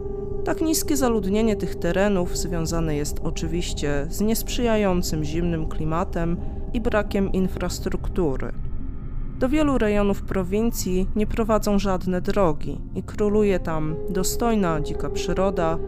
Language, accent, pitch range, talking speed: Polish, native, 165-215 Hz, 110 wpm